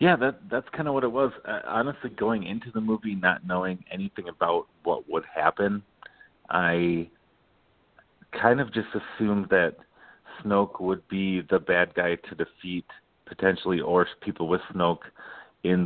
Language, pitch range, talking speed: English, 90-100 Hz, 155 wpm